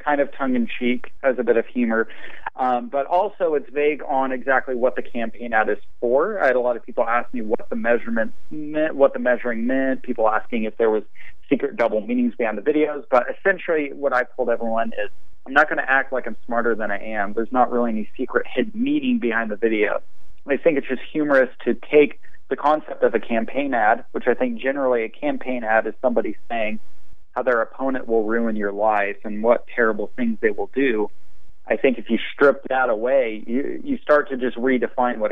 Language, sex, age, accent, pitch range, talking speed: English, male, 30-49, American, 115-140 Hz, 215 wpm